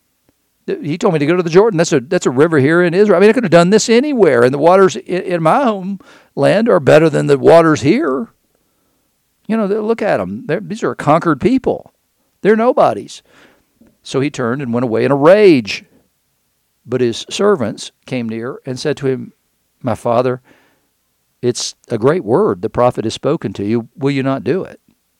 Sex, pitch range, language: male, 120-170 Hz, English